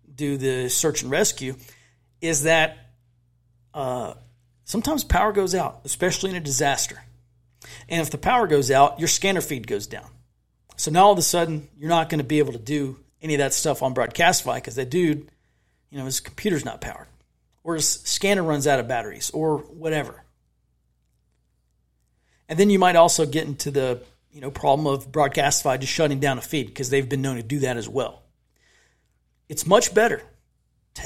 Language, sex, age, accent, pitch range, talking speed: English, male, 40-59, American, 125-160 Hz, 185 wpm